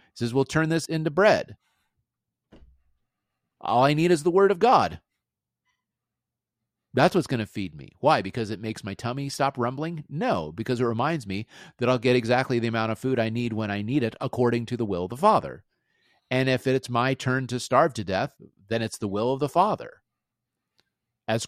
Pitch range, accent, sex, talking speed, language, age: 110-140 Hz, American, male, 200 wpm, English, 40-59